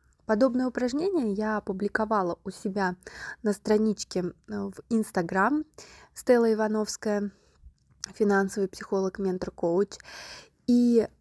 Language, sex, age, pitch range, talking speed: Russian, female, 20-39, 195-245 Hz, 85 wpm